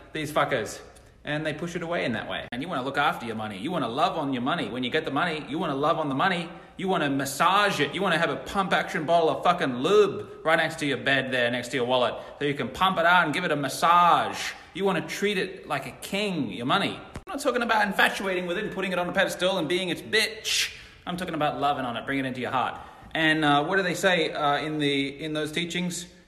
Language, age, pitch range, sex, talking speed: English, 30-49, 145-185 Hz, male, 265 wpm